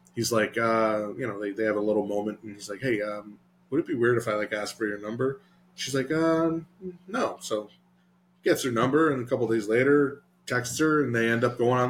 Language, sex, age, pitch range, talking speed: English, male, 20-39, 115-180 Hz, 245 wpm